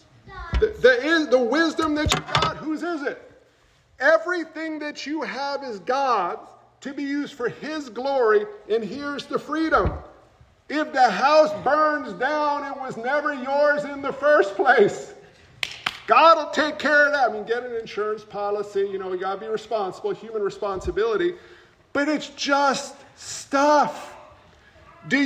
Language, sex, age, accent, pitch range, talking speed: English, male, 50-69, American, 240-325 Hz, 155 wpm